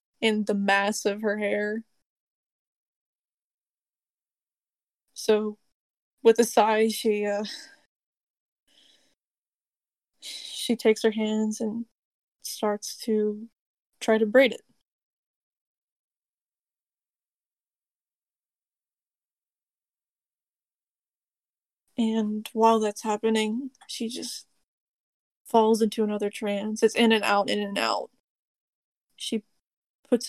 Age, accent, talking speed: 20-39, American, 85 wpm